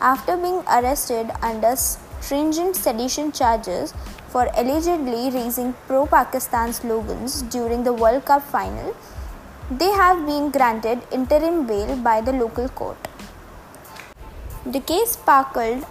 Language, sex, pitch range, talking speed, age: English, female, 240-295 Hz, 115 wpm, 20-39